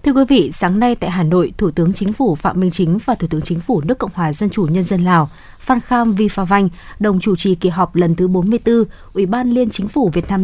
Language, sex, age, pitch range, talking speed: Vietnamese, female, 20-39, 185-235 Hz, 270 wpm